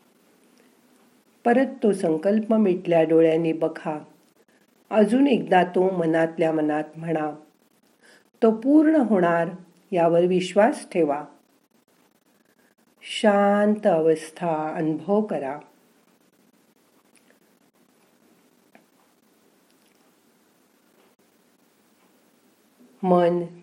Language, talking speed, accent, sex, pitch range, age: Marathi, 45 wpm, native, female, 160-215 Hz, 50-69